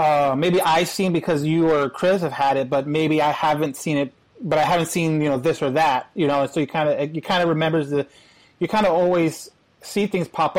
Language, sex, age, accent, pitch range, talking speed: English, male, 30-49, American, 155-195 Hz, 255 wpm